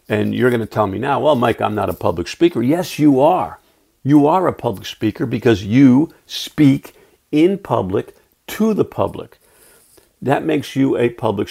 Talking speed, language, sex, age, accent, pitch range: 180 wpm, English, male, 50-69, American, 115-175 Hz